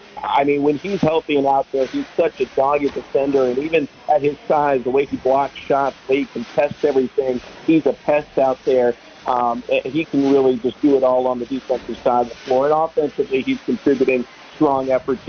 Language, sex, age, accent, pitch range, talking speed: English, male, 50-69, American, 135-165 Hz, 215 wpm